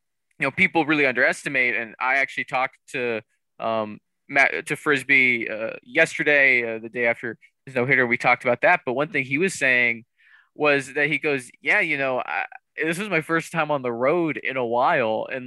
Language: English